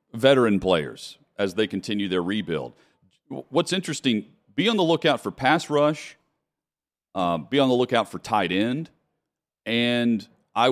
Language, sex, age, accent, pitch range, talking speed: English, male, 40-59, American, 100-125 Hz, 145 wpm